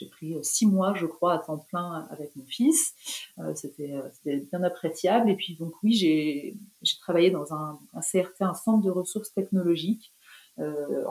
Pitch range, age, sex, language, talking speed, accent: 150-190 Hz, 30-49, female, French, 180 wpm, French